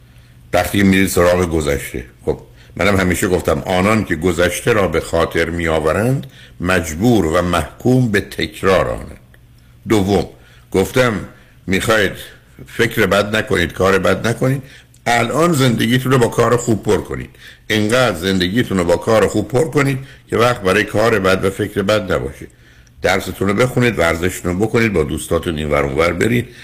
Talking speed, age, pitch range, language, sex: 145 wpm, 60-79, 85-120 Hz, Persian, male